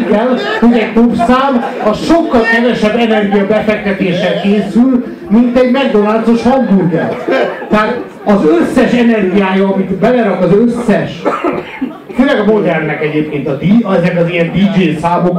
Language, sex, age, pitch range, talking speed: Hungarian, male, 60-79, 180-235 Hz, 130 wpm